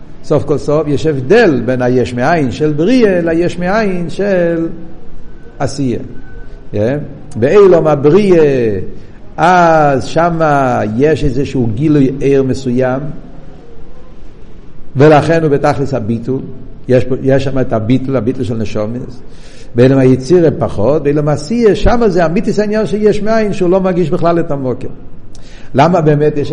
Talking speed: 115 wpm